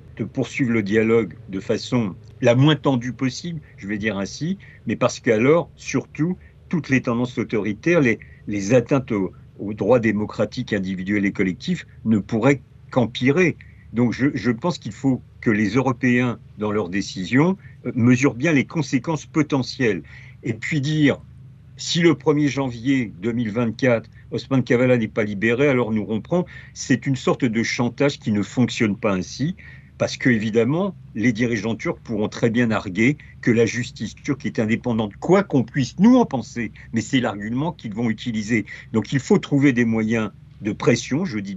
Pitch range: 110-135 Hz